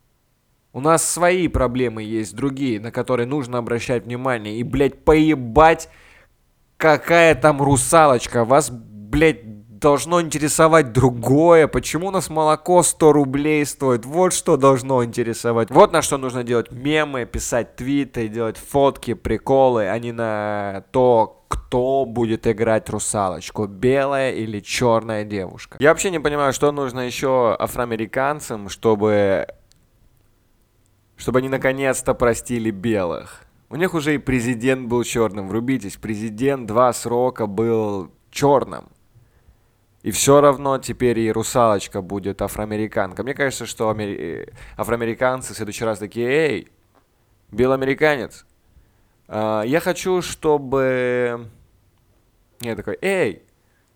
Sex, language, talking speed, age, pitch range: male, Russian, 120 wpm, 20-39, 110-140 Hz